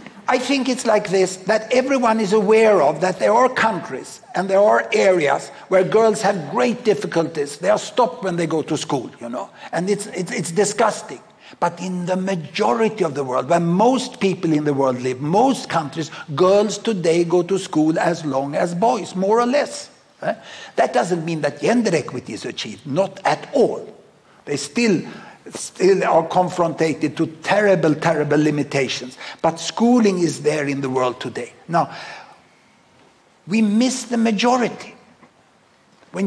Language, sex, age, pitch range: Japanese, male, 60-79, 170-225 Hz